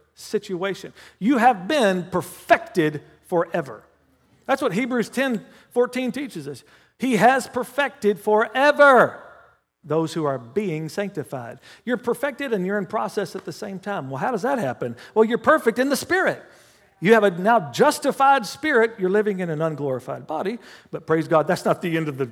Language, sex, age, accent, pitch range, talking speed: English, male, 50-69, American, 145-220 Hz, 170 wpm